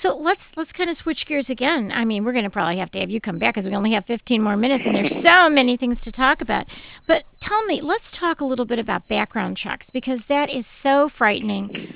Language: English